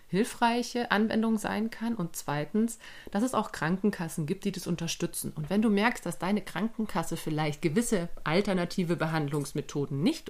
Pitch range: 160-205 Hz